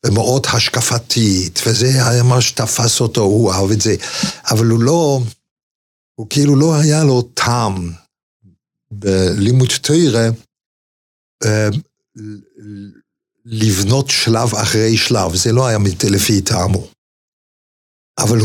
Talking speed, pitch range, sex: 105 wpm, 100-125 Hz, male